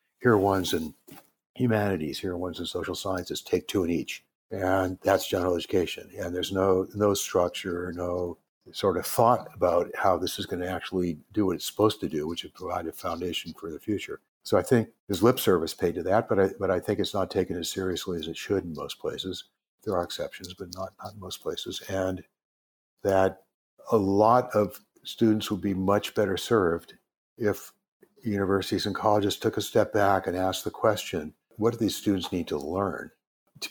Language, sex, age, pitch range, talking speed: English, male, 60-79, 90-105 Hz, 205 wpm